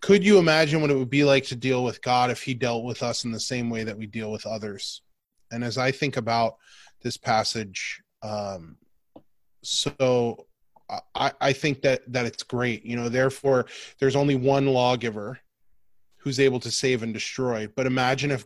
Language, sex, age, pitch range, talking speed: English, male, 20-39, 120-140 Hz, 190 wpm